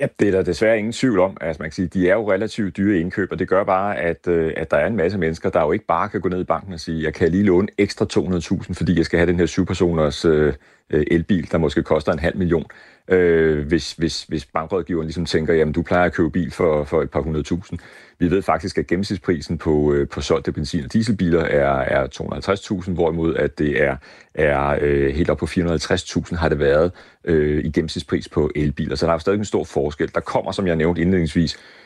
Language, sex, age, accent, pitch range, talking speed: Danish, male, 40-59, native, 80-95 Hz, 225 wpm